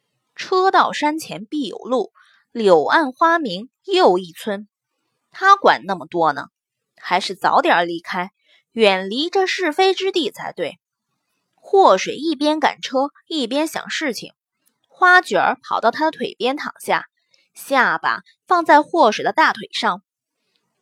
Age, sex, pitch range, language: 20-39, female, 240-355 Hz, Chinese